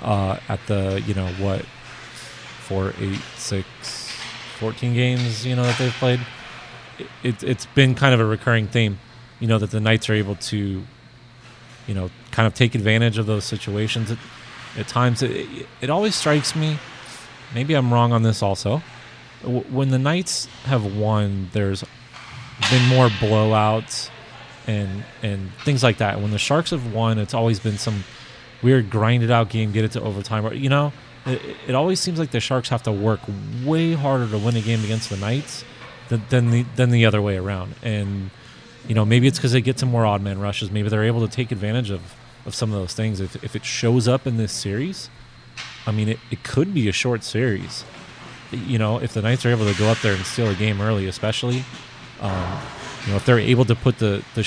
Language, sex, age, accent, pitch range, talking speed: English, male, 30-49, American, 105-125 Hz, 205 wpm